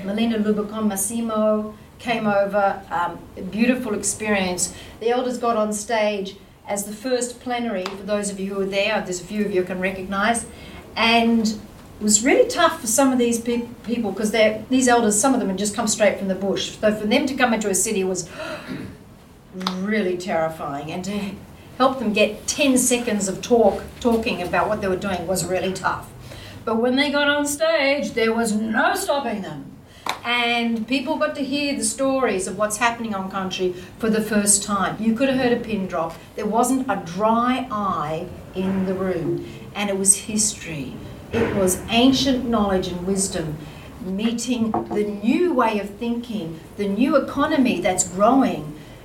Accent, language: Australian, English